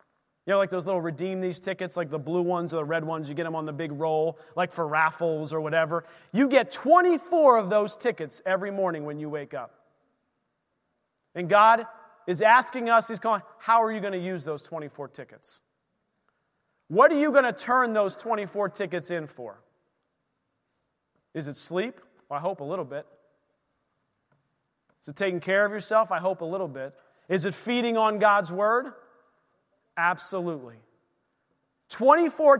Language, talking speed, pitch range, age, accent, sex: English, 175 wpm, 160-220 Hz, 30-49, American, male